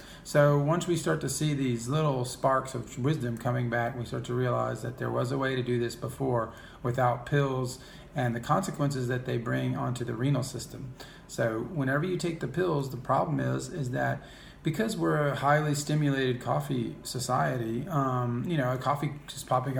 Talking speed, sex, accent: 190 wpm, male, American